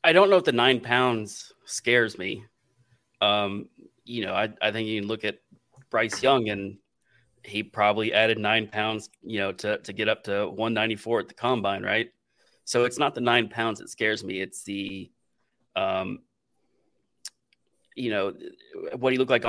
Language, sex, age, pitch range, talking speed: English, male, 30-49, 100-115 Hz, 180 wpm